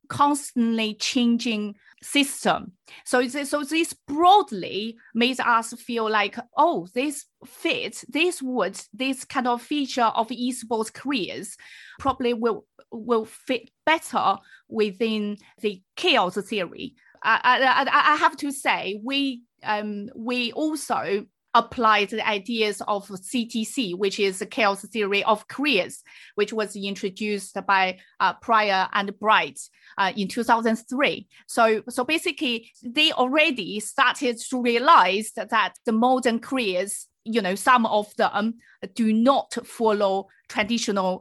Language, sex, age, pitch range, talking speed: English, female, 30-49, 205-260 Hz, 130 wpm